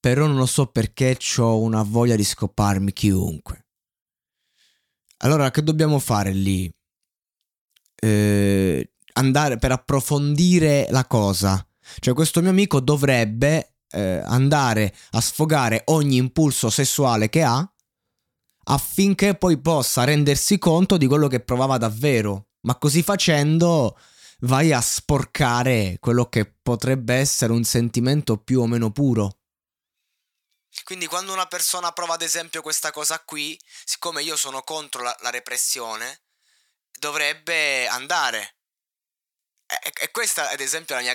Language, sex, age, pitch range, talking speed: Italian, male, 20-39, 115-150 Hz, 130 wpm